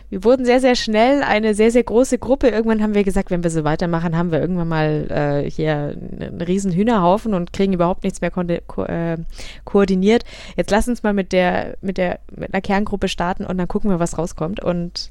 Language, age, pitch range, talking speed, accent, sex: German, 20-39, 180-215 Hz, 220 wpm, German, female